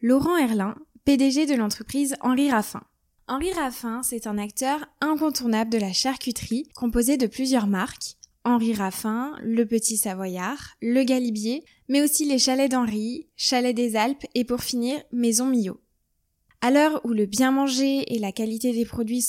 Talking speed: 160 wpm